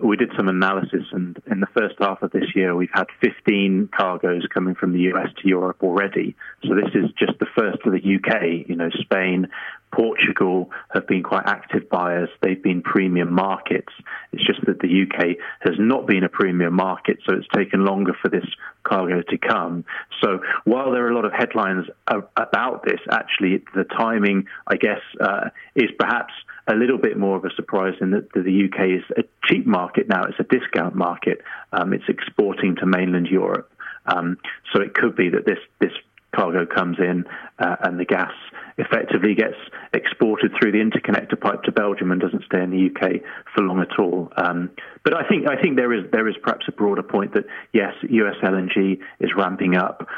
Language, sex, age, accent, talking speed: English, male, 30-49, British, 195 wpm